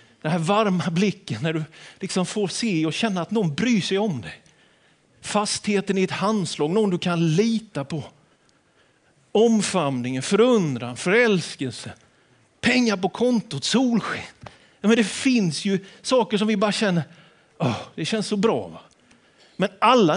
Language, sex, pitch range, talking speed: Swedish, male, 140-215 Hz, 150 wpm